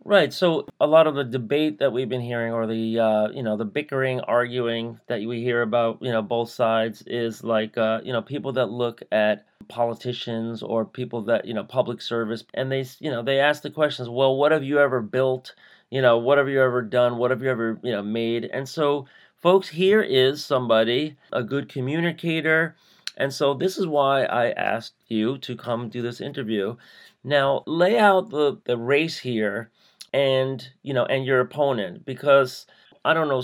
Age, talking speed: 40-59, 200 wpm